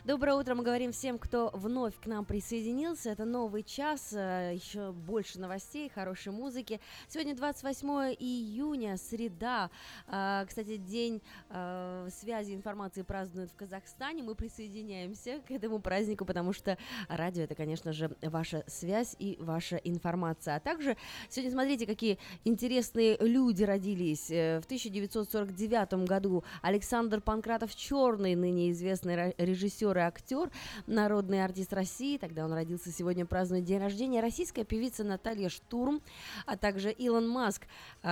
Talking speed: 130 wpm